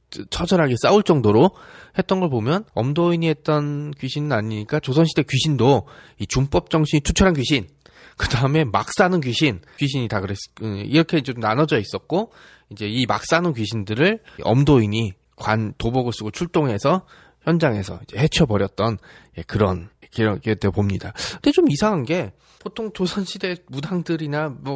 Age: 20-39